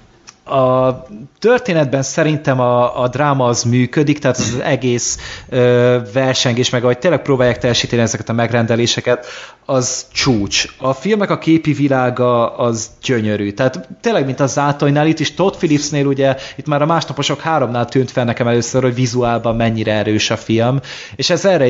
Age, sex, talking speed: 30-49, male, 160 wpm